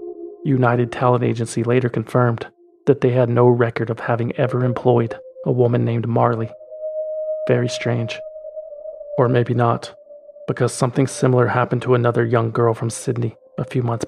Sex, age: male, 40-59